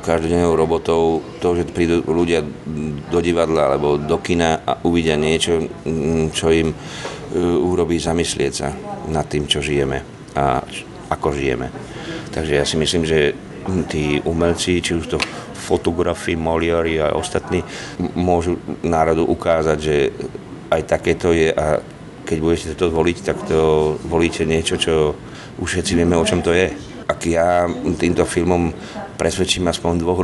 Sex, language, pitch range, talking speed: male, Slovak, 80-90 Hz, 135 wpm